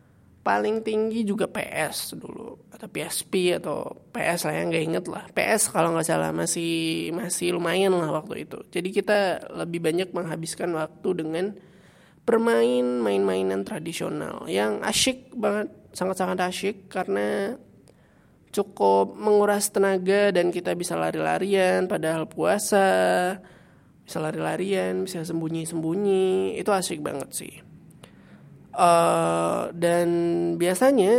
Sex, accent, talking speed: male, native, 115 wpm